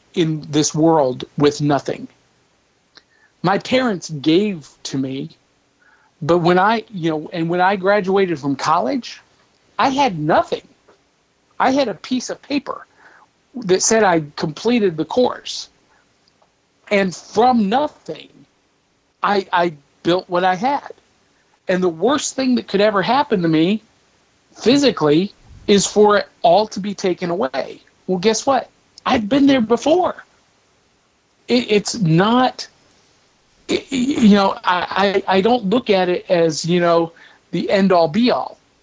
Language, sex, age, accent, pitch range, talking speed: English, male, 50-69, American, 170-225 Hz, 140 wpm